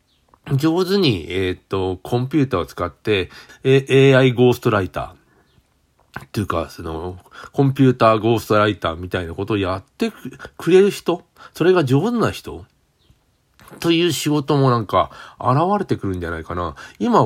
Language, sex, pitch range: Japanese, male, 100-150 Hz